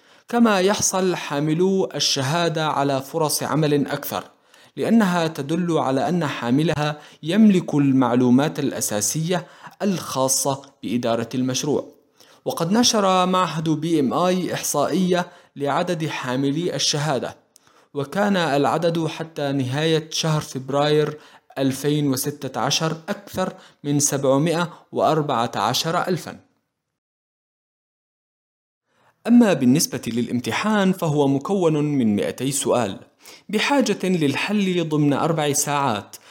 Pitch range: 135-175 Hz